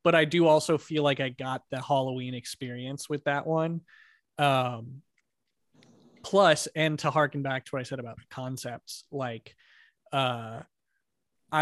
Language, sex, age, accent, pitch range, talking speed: English, male, 20-39, American, 130-155 Hz, 150 wpm